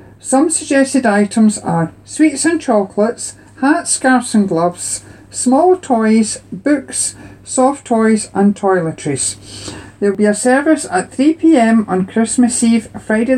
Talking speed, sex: 130 wpm, male